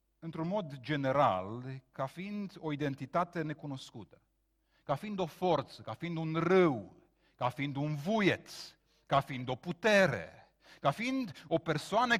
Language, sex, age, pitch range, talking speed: Romanian, male, 40-59, 150-215 Hz, 140 wpm